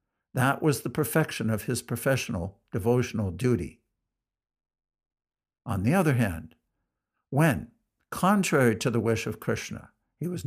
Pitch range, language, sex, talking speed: 115-145 Hz, English, male, 125 wpm